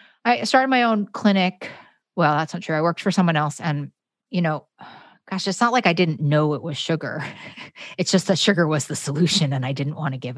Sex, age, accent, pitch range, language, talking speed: female, 30-49, American, 140-175 Hz, English, 230 wpm